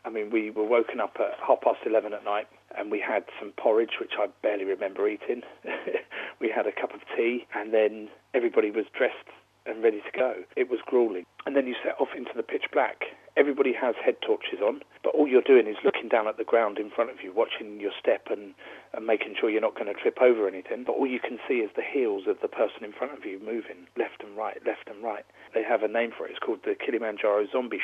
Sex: male